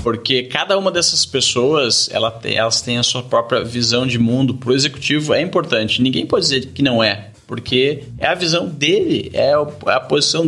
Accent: Brazilian